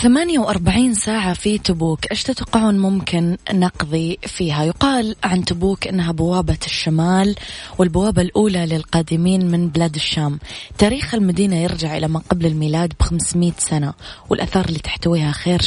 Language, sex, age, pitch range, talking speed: Arabic, female, 20-39, 160-190 Hz, 135 wpm